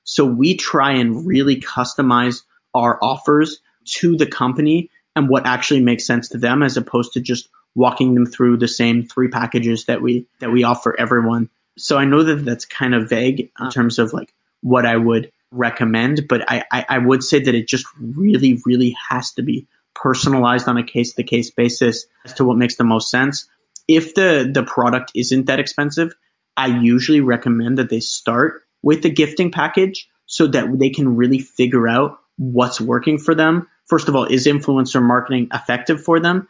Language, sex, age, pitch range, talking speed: English, male, 30-49, 120-140 Hz, 190 wpm